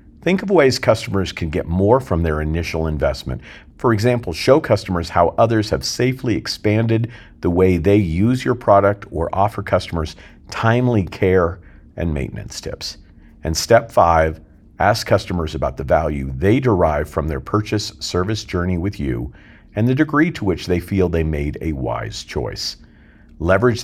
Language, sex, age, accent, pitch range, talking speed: English, male, 50-69, American, 80-110 Hz, 160 wpm